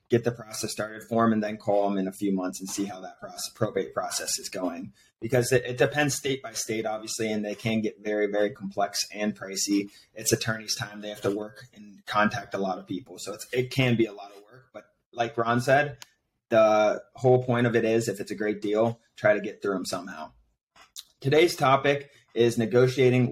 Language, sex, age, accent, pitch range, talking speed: English, male, 30-49, American, 105-125 Hz, 220 wpm